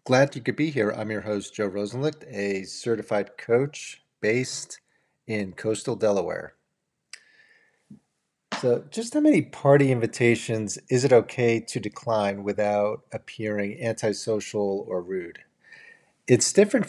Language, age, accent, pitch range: English, 40-59, American, 105-130 Hz